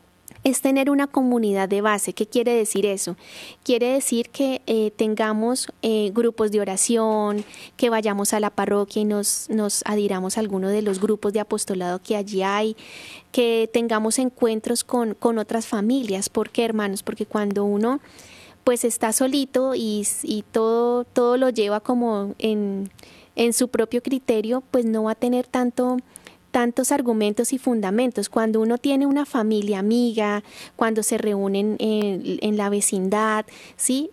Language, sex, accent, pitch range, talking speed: Spanish, female, Colombian, 210-240 Hz, 160 wpm